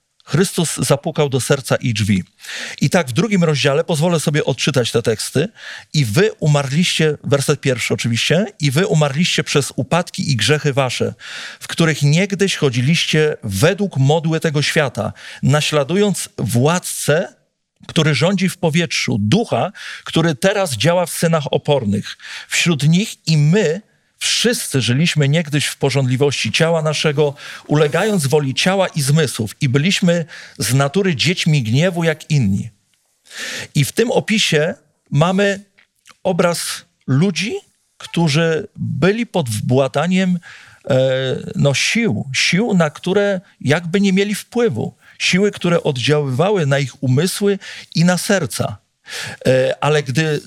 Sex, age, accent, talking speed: male, 40-59, native, 125 wpm